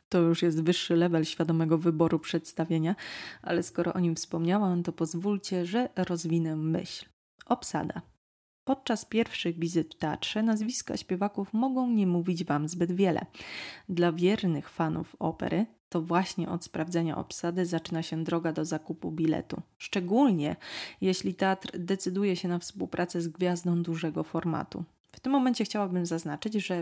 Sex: female